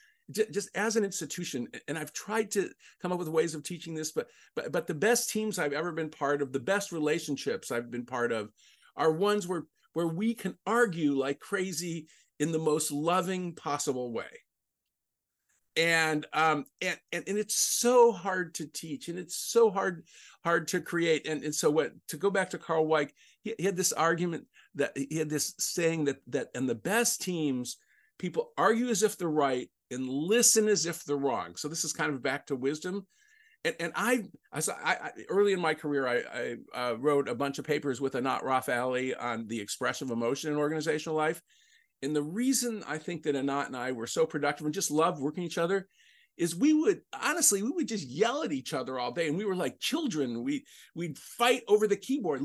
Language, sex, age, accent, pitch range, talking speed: English, male, 50-69, American, 145-210 Hz, 205 wpm